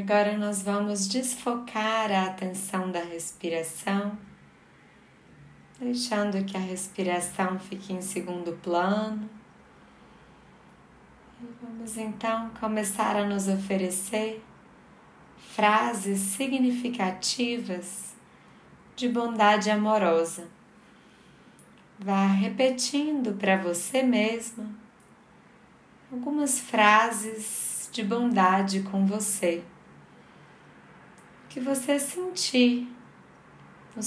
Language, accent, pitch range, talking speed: Portuguese, Brazilian, 185-220 Hz, 75 wpm